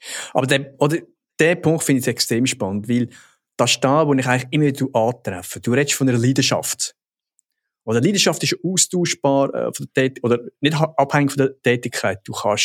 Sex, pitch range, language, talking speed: male, 120-145 Hz, German, 190 wpm